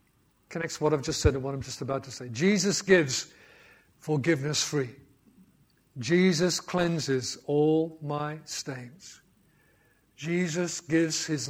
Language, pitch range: English, 155-215 Hz